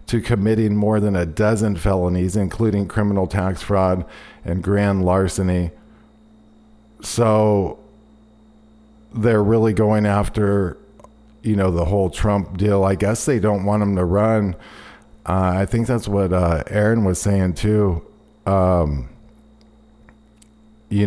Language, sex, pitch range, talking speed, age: English, male, 90-110 Hz, 125 wpm, 50-69